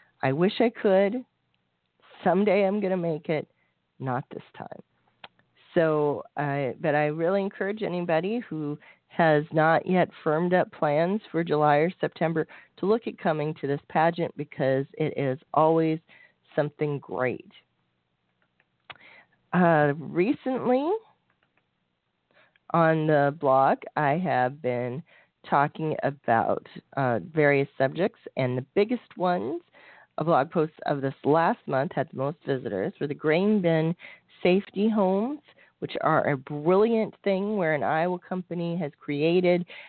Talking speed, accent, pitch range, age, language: 135 wpm, American, 140-180 Hz, 40-59, English